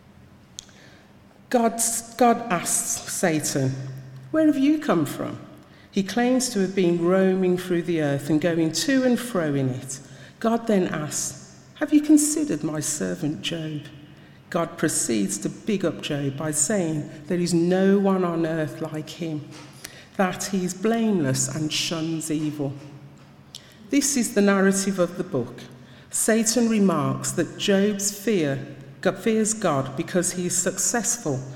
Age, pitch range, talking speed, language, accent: 50-69, 150-200 Hz, 145 wpm, English, British